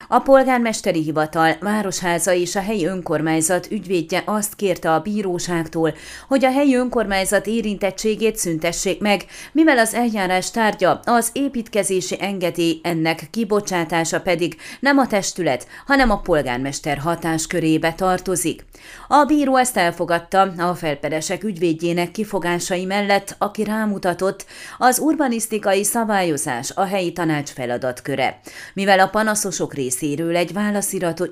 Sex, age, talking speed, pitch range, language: female, 30-49, 125 wpm, 170-215 Hz, Hungarian